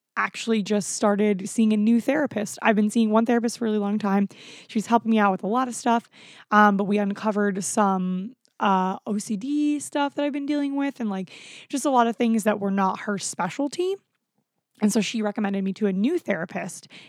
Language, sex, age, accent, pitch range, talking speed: English, female, 20-39, American, 200-240 Hz, 210 wpm